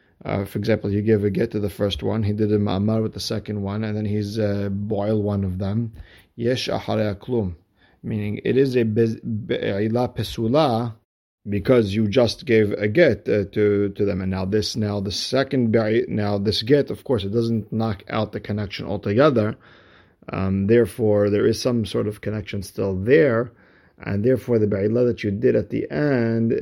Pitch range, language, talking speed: 100-115 Hz, English, 185 wpm